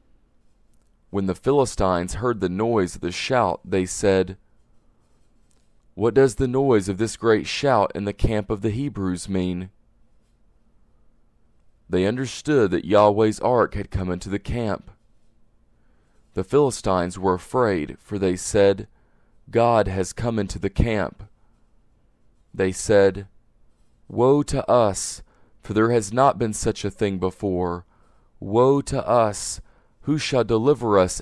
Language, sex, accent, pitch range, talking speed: English, male, American, 95-120 Hz, 135 wpm